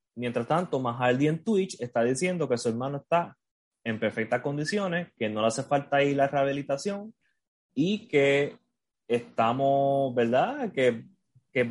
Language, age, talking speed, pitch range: Spanish, 20-39, 145 wpm, 115-150 Hz